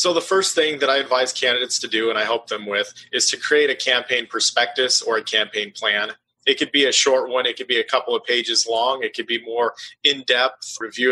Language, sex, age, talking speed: English, male, 30-49, 245 wpm